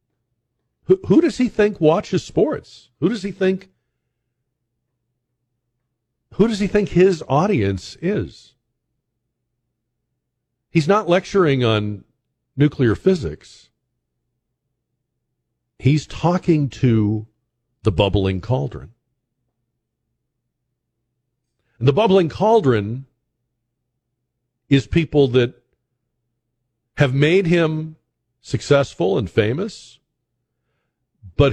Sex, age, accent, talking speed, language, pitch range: male, 50-69, American, 80 wpm, English, 110-135 Hz